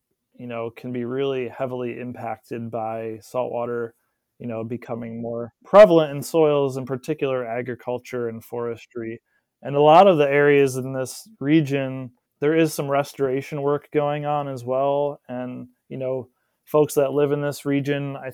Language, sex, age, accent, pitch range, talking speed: English, male, 20-39, American, 125-145 Hz, 160 wpm